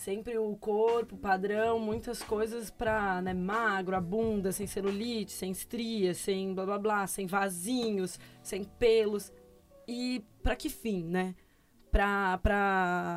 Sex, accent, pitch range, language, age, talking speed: female, Brazilian, 190-235 Hz, Portuguese, 20-39, 130 wpm